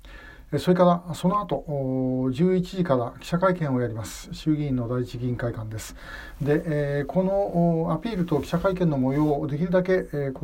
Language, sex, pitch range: Japanese, male, 125-155 Hz